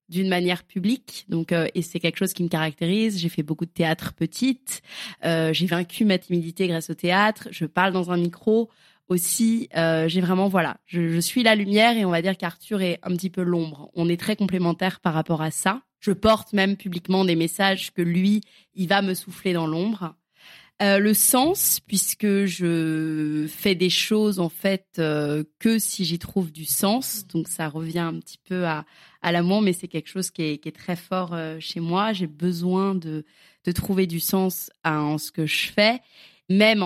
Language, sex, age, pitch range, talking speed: French, female, 20-39, 170-205 Hz, 205 wpm